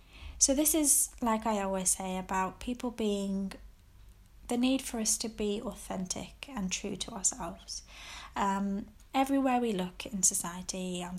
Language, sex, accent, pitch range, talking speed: English, female, British, 185-225 Hz, 150 wpm